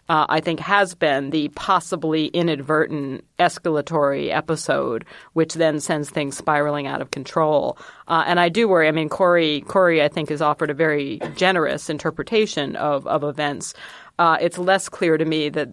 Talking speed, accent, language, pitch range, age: 170 wpm, American, English, 150-170 Hz, 40-59